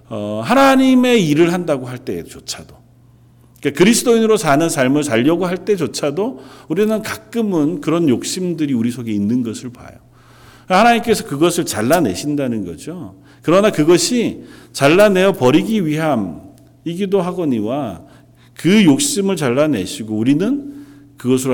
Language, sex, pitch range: Korean, male, 115-165 Hz